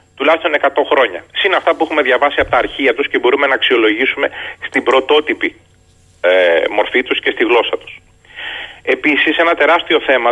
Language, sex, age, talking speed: Greek, male, 30-49, 170 wpm